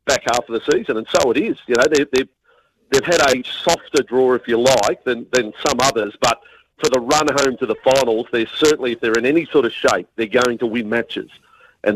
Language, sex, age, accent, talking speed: English, male, 50-69, Australian, 240 wpm